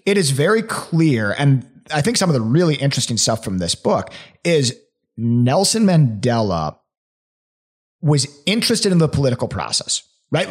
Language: English